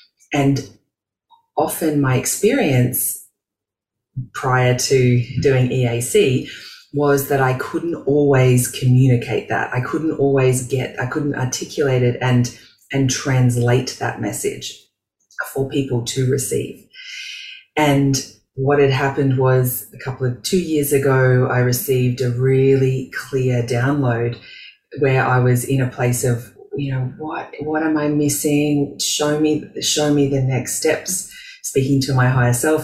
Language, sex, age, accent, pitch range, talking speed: English, female, 30-49, Australian, 125-145 Hz, 135 wpm